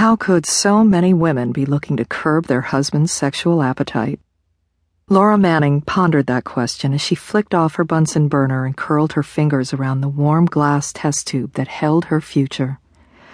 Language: English